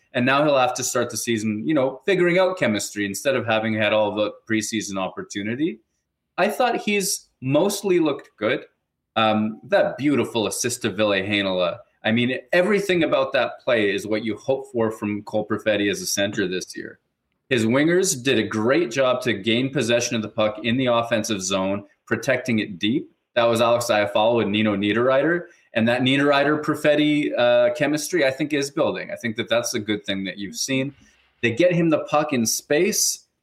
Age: 20-39